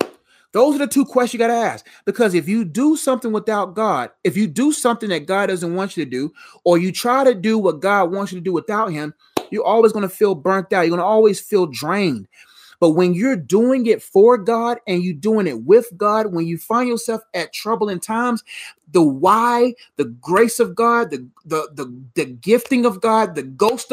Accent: American